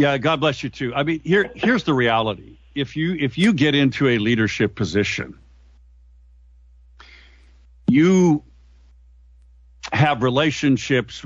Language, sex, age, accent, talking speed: English, male, 50-69, American, 125 wpm